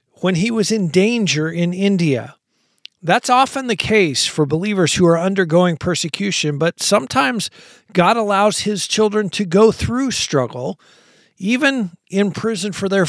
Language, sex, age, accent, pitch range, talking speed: English, male, 50-69, American, 165-205 Hz, 145 wpm